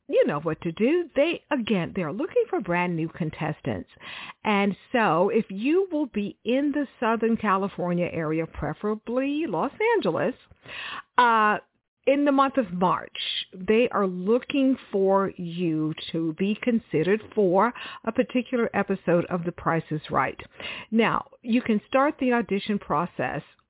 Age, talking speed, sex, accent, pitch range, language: 50-69, 145 wpm, female, American, 180-250 Hz, English